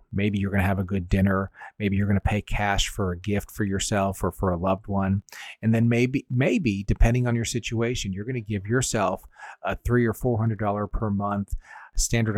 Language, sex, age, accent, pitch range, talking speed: English, male, 40-59, American, 100-115 Hz, 215 wpm